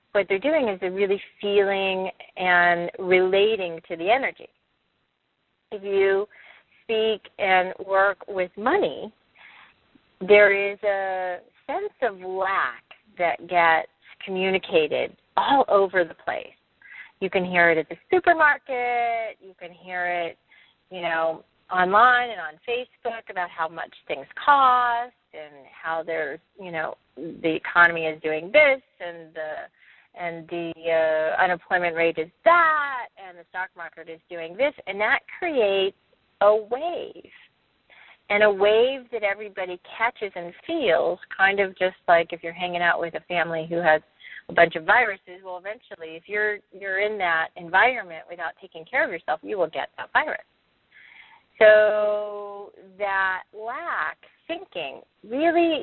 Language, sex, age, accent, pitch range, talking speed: English, female, 40-59, American, 175-230 Hz, 145 wpm